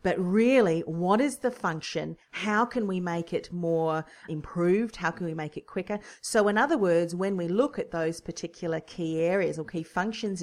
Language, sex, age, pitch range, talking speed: English, female, 40-59, 165-210 Hz, 195 wpm